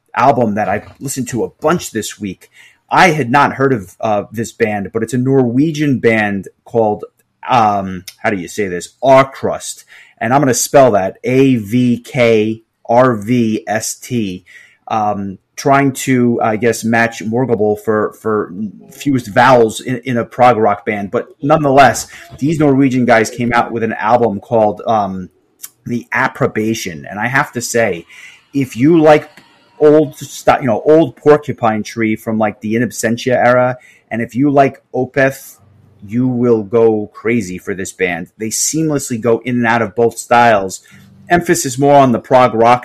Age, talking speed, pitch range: 30-49, 160 wpm, 110-135 Hz